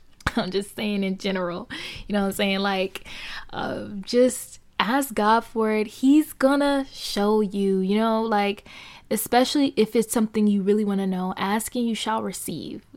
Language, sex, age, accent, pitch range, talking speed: English, female, 20-39, American, 200-250 Hz, 175 wpm